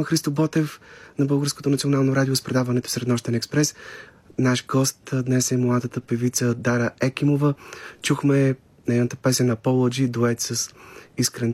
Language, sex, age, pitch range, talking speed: Bulgarian, male, 30-49, 120-135 Hz, 135 wpm